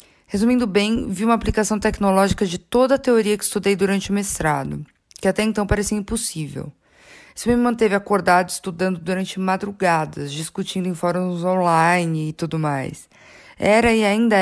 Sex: female